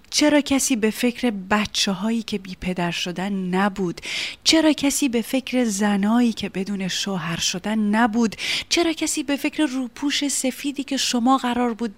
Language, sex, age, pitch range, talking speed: Persian, female, 30-49, 175-230 Hz, 155 wpm